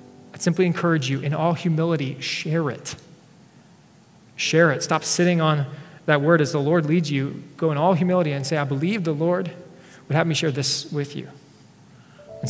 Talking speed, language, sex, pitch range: 185 wpm, English, male, 150-175 Hz